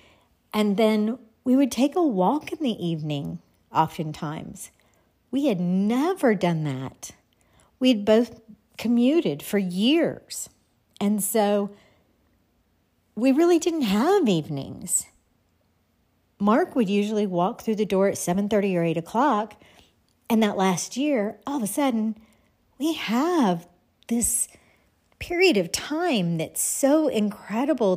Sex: female